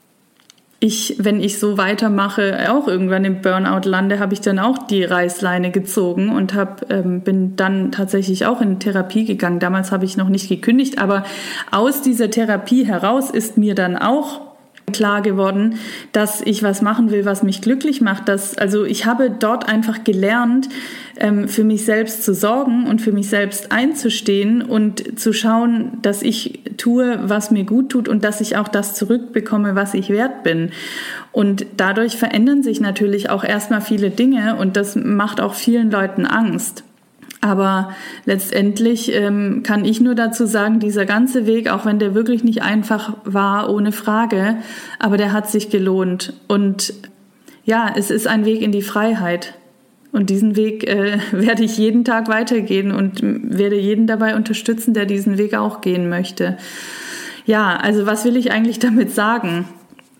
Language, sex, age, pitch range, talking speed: German, female, 20-39, 200-235 Hz, 165 wpm